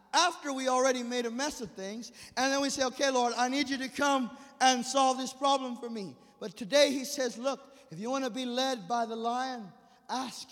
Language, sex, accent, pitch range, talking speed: English, male, American, 240-295 Hz, 230 wpm